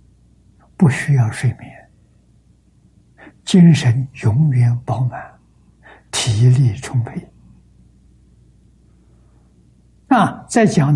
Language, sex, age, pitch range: Chinese, male, 60-79, 120-160 Hz